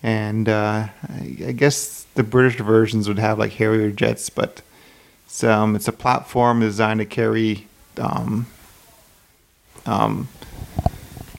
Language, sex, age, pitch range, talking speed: English, male, 30-49, 105-115 Hz, 130 wpm